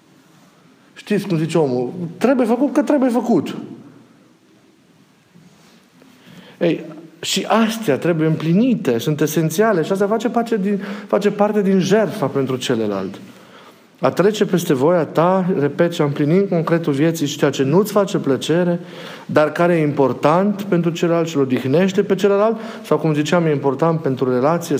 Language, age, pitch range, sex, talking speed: Romanian, 40-59, 130-175 Hz, male, 140 wpm